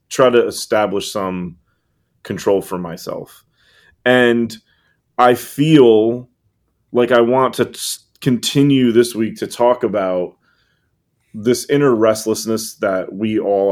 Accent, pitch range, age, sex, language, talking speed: American, 100-120 Hz, 30-49, male, English, 115 wpm